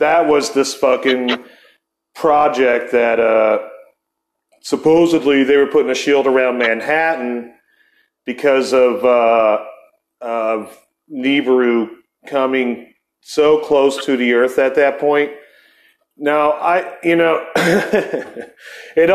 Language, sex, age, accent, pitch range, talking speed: English, male, 40-59, American, 135-180 Hz, 105 wpm